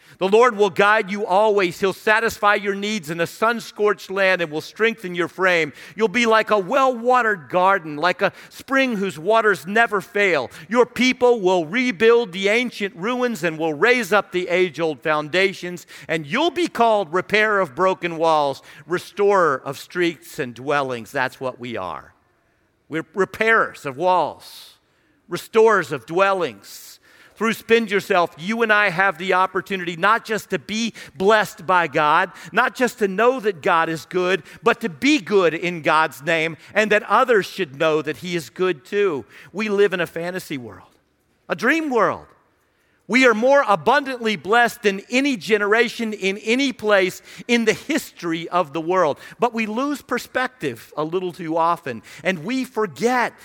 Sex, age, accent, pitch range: male, 50-69, American, 165-225 Hz